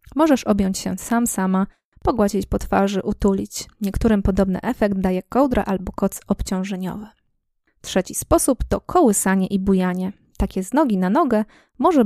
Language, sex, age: Polish, female, 20-39